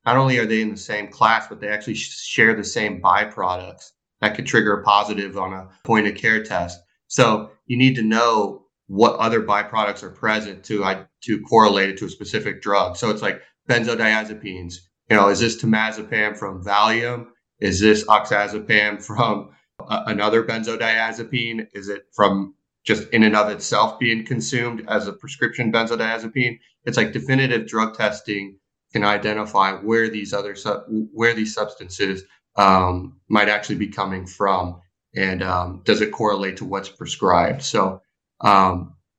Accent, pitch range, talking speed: American, 100-115 Hz, 165 wpm